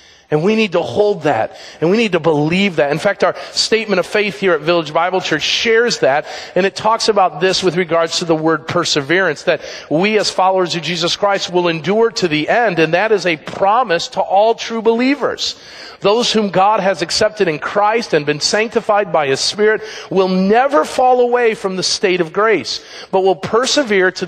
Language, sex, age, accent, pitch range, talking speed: English, male, 40-59, American, 170-215 Hz, 205 wpm